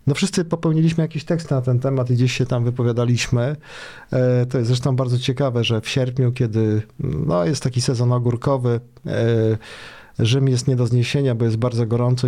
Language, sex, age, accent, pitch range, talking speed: Polish, male, 40-59, native, 120-140 Hz, 175 wpm